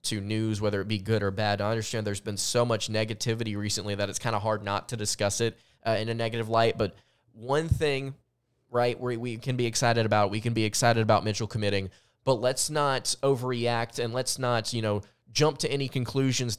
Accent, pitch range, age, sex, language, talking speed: American, 105-135 Hz, 20-39, male, English, 215 wpm